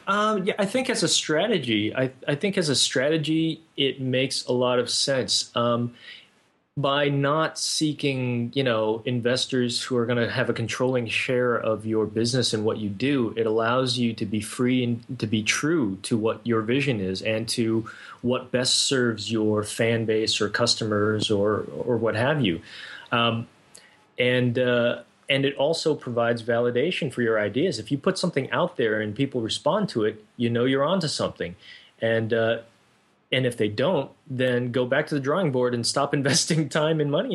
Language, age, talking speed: English, 20-39, 190 wpm